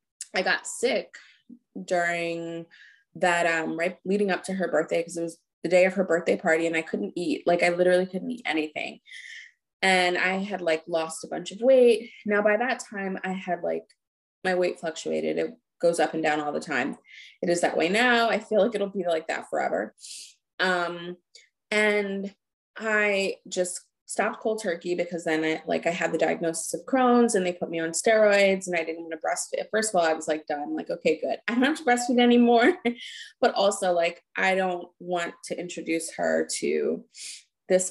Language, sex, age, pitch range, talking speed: English, female, 20-39, 165-205 Hz, 200 wpm